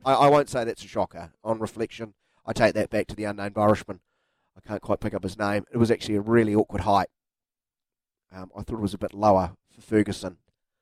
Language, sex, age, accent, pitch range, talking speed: English, male, 30-49, Australian, 100-125 Hz, 225 wpm